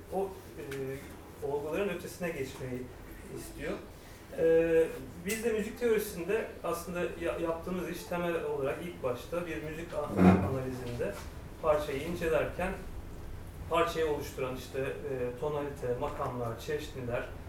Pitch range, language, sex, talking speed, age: 125-170 Hz, Turkish, male, 105 wpm, 40-59